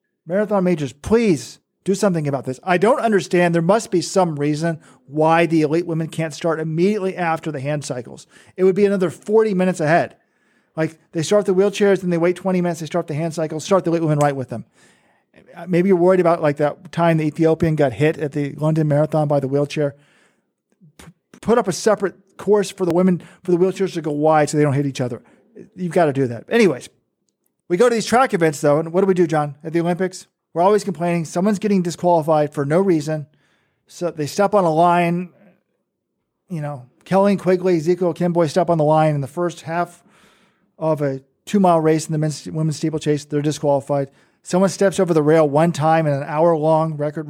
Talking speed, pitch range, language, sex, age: 215 wpm, 150-185 Hz, English, male, 40-59